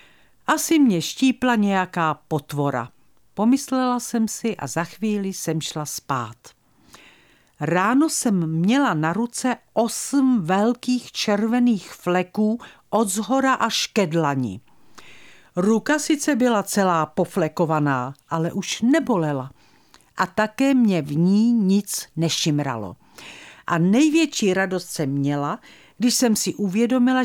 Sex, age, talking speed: female, 50-69, 115 wpm